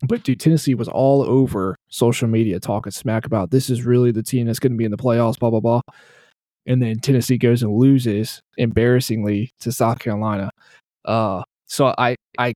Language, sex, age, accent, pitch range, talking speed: English, male, 20-39, American, 105-130 Hz, 190 wpm